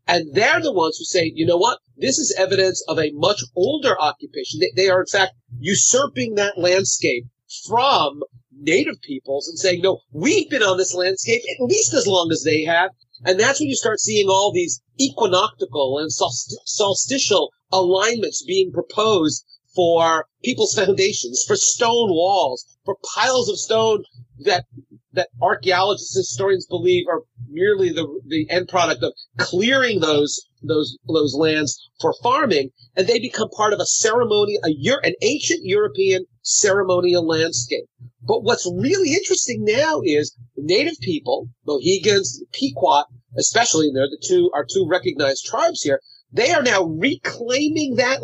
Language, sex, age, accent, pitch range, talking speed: English, male, 40-59, American, 150-240 Hz, 155 wpm